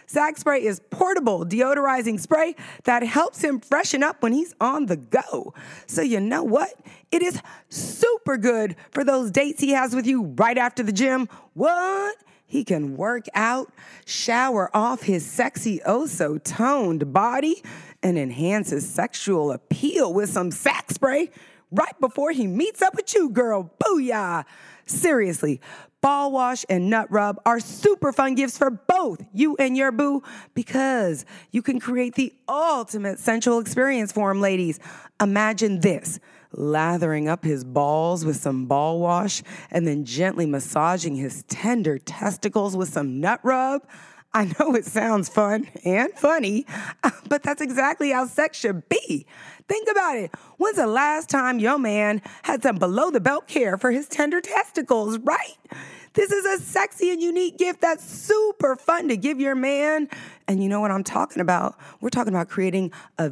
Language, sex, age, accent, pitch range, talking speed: English, female, 30-49, American, 190-285 Hz, 160 wpm